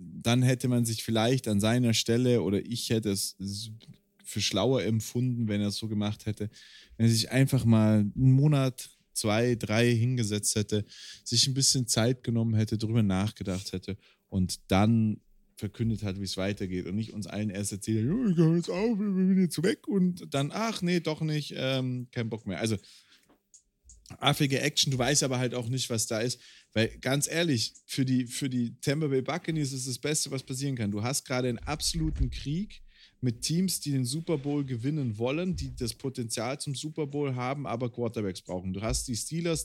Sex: male